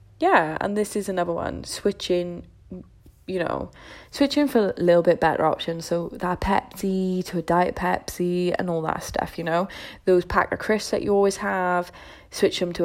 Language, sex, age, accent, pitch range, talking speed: English, female, 10-29, British, 170-185 Hz, 185 wpm